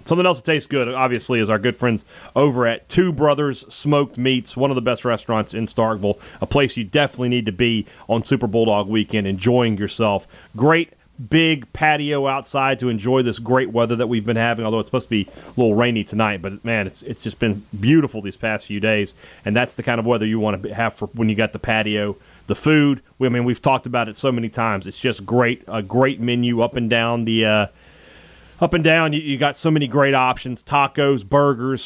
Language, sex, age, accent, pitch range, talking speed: English, male, 30-49, American, 110-140 Hz, 225 wpm